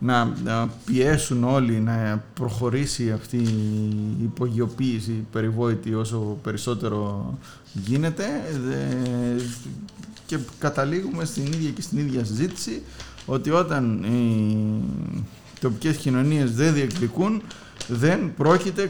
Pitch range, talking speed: 115-140 Hz, 90 wpm